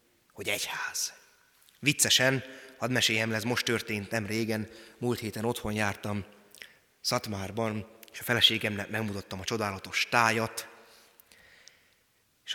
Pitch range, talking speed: 105-140 Hz, 105 wpm